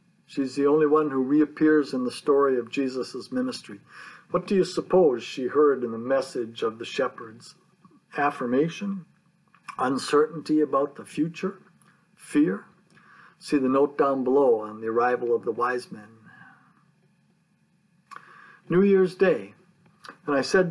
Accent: American